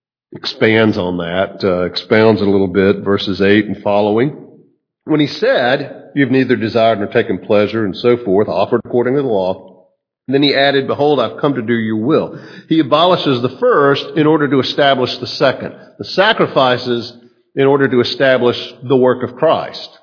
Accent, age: American, 50-69